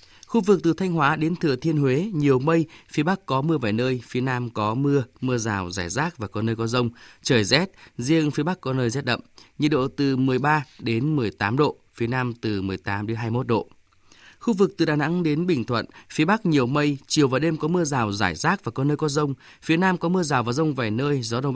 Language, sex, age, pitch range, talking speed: Vietnamese, male, 20-39, 115-150 Hz, 250 wpm